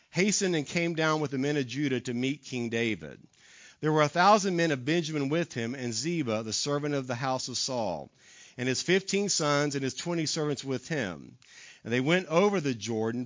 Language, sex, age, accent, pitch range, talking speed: English, male, 50-69, American, 125-170 Hz, 215 wpm